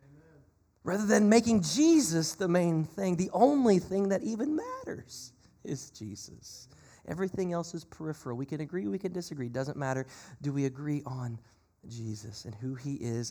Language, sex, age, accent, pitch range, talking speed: English, male, 30-49, American, 120-185 Hz, 165 wpm